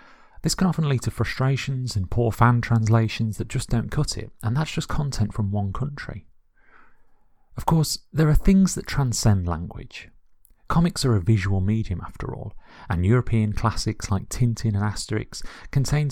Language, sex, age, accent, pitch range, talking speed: English, male, 30-49, British, 100-130 Hz, 170 wpm